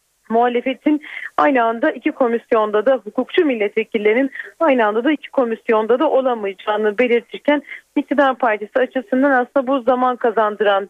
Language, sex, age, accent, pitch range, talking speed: Turkish, female, 30-49, native, 225-285 Hz, 125 wpm